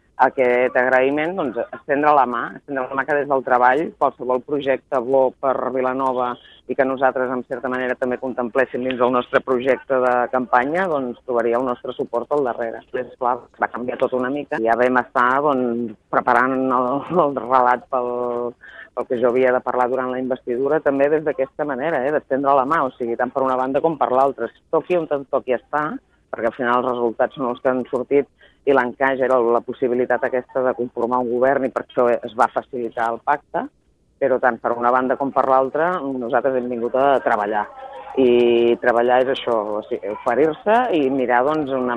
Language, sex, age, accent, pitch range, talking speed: Spanish, female, 30-49, Spanish, 125-140 Hz, 200 wpm